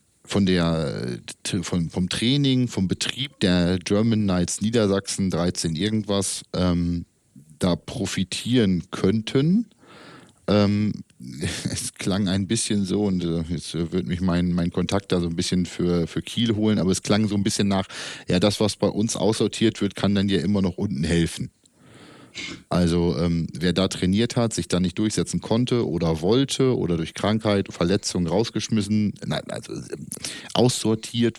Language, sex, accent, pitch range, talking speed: German, male, German, 90-110 Hz, 155 wpm